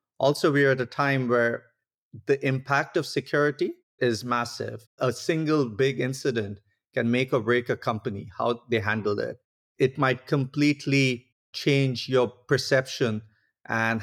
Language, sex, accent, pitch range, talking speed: English, male, Indian, 115-140 Hz, 145 wpm